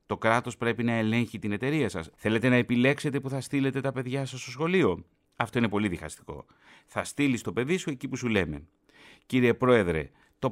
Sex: male